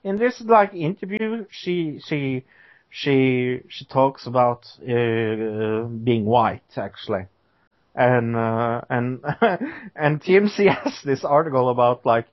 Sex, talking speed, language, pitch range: male, 115 wpm, English, 120-175 Hz